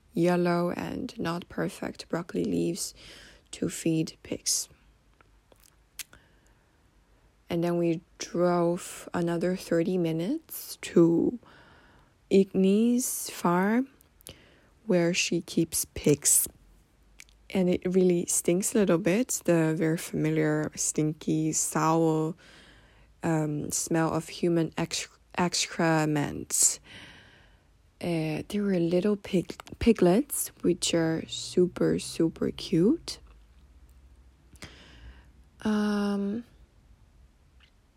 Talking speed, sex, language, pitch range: 85 wpm, female, English, 115-185 Hz